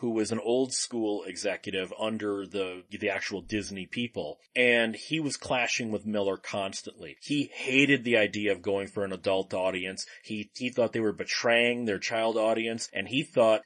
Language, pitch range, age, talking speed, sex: English, 105-130 Hz, 30-49, 175 wpm, male